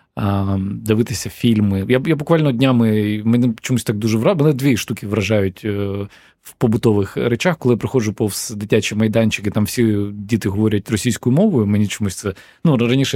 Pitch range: 105-130 Hz